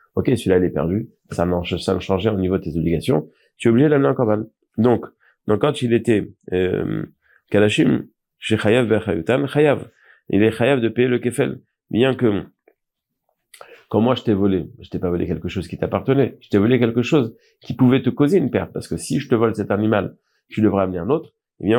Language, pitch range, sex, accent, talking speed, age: French, 95-130 Hz, male, French, 220 wpm, 40-59